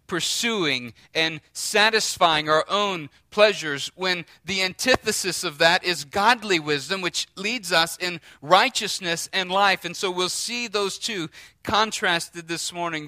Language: English